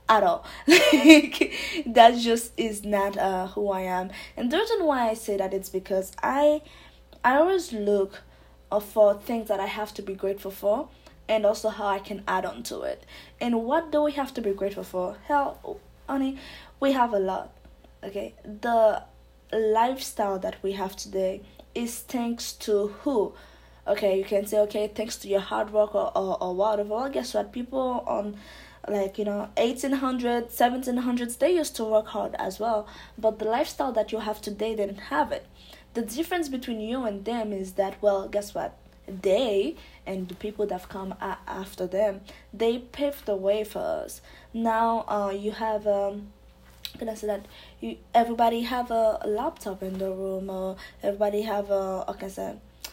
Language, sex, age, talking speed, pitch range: English, female, 20-39, 180 wpm, 200-245 Hz